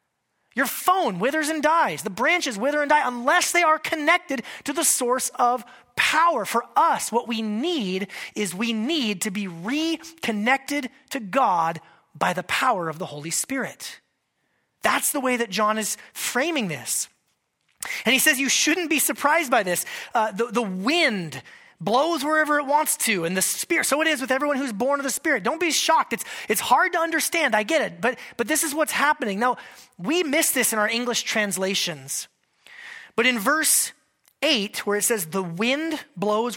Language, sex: English, male